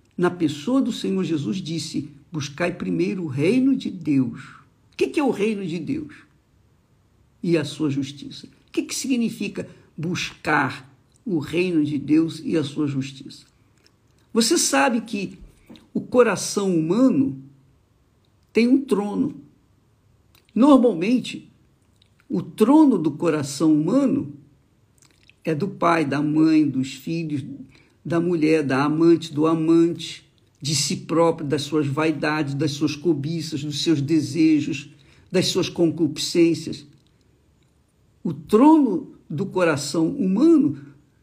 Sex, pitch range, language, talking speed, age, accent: male, 145-230 Hz, Portuguese, 120 wpm, 60-79, Brazilian